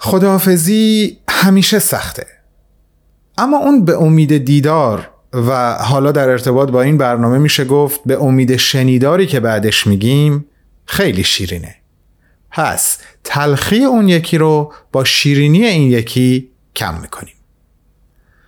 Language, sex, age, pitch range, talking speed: Persian, male, 40-59, 110-160 Hz, 115 wpm